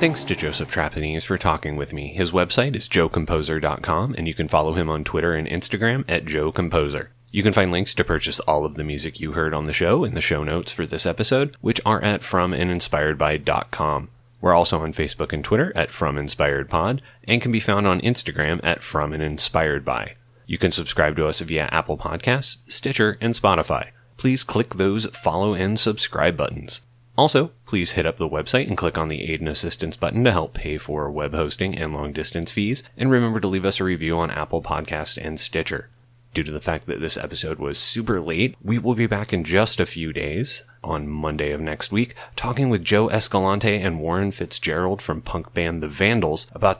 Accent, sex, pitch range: American, male, 80-110 Hz